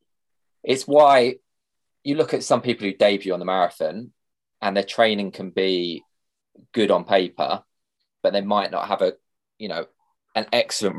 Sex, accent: male, British